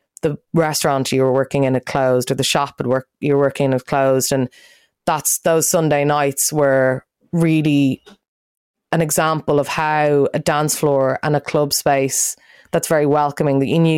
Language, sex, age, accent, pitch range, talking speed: English, female, 20-39, Irish, 135-150 Hz, 180 wpm